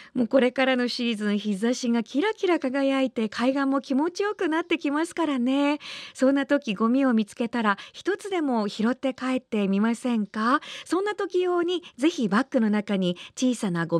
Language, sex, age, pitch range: Japanese, female, 40-59, 195-300 Hz